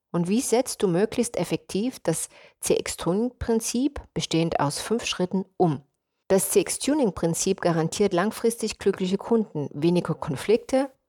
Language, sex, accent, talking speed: English, female, German, 115 wpm